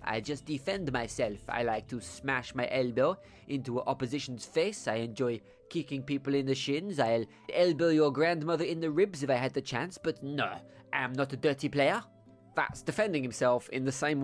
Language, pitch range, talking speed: English, 120-155 Hz, 195 wpm